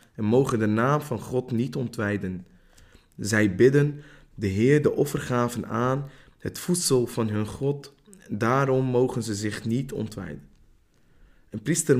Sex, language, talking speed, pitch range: male, Dutch, 140 wpm, 105-135 Hz